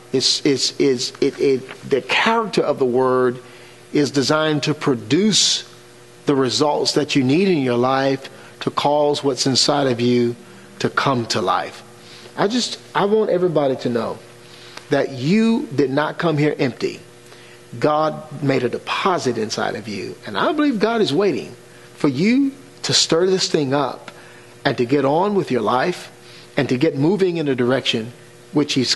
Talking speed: 170 wpm